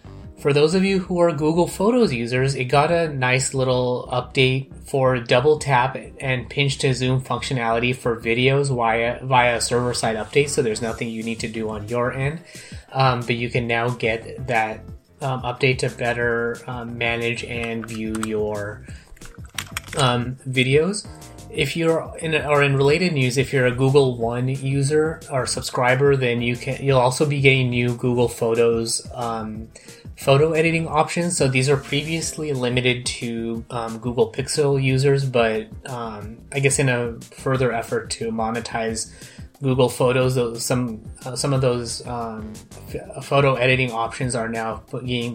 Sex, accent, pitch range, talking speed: male, American, 115-140 Hz, 165 wpm